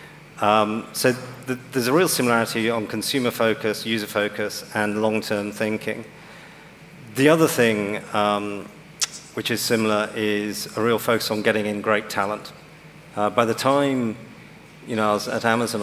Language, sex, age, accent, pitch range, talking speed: English, male, 40-59, British, 105-115 Hz, 145 wpm